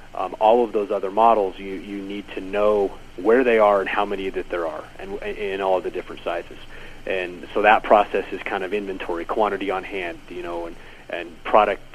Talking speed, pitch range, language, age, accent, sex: 215 wpm, 100-120 Hz, English, 30-49, American, male